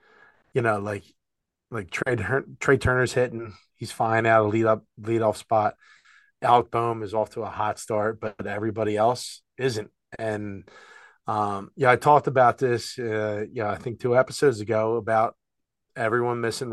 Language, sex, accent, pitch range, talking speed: English, male, American, 110-130 Hz, 160 wpm